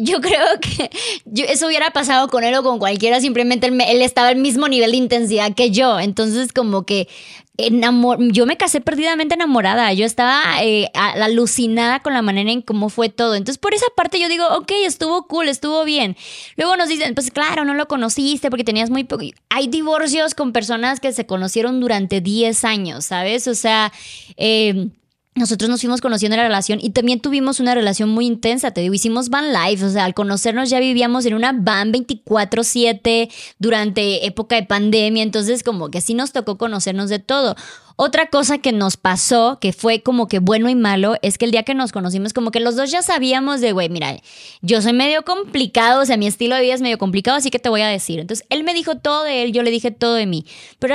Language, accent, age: Spanish, Mexican, 20-39